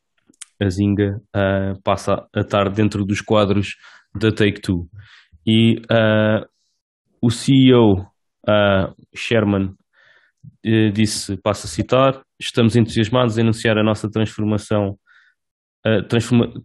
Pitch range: 105-120 Hz